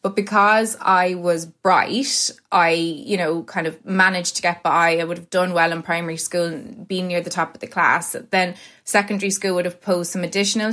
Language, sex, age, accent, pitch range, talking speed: English, female, 20-39, Irish, 170-195 Hz, 215 wpm